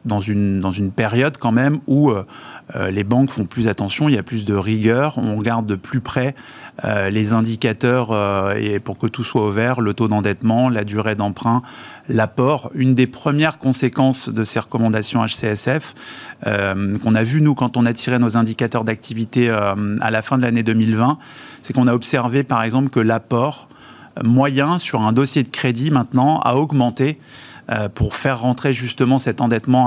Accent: French